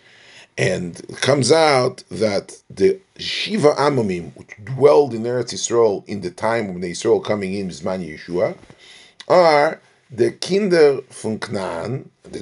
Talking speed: 140 wpm